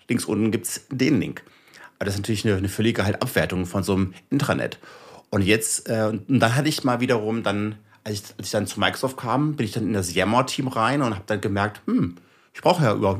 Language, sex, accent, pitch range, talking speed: German, male, German, 100-125 Hz, 240 wpm